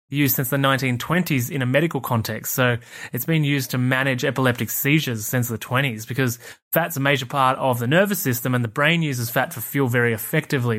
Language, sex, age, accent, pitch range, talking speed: English, male, 20-39, Australian, 120-145 Hz, 205 wpm